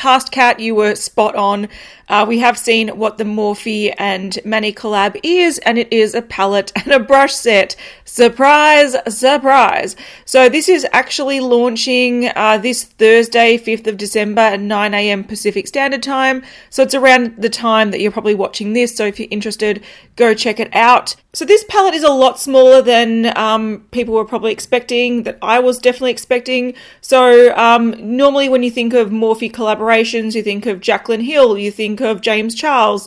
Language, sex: English, female